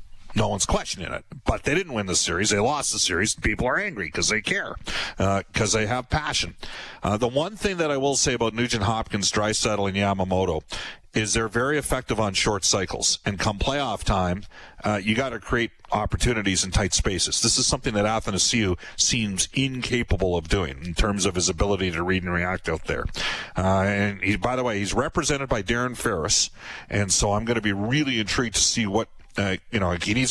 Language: English